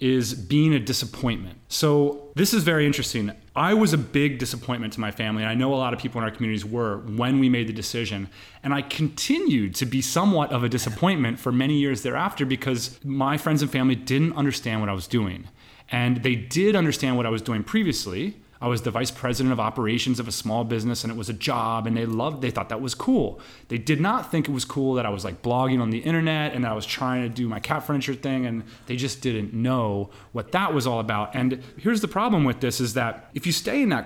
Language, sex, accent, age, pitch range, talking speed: English, male, American, 30-49, 115-145 Hz, 245 wpm